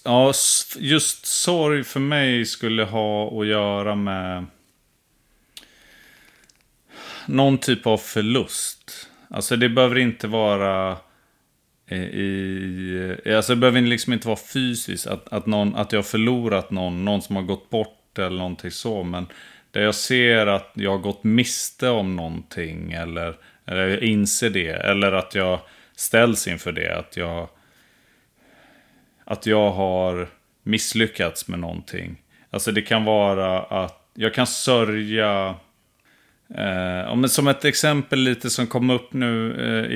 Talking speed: 140 wpm